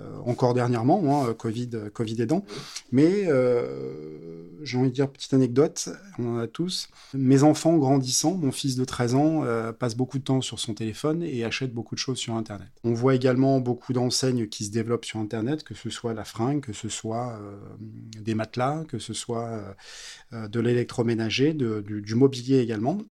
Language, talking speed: French, 185 wpm